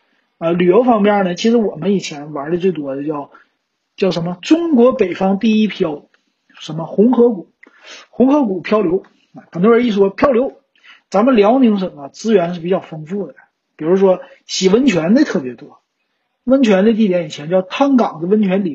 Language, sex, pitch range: Chinese, male, 165-215 Hz